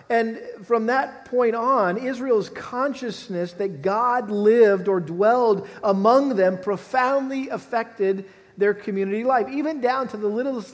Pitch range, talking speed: 170-215 Hz, 135 wpm